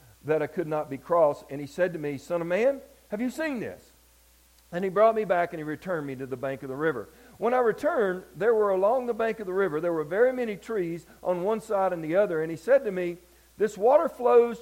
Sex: male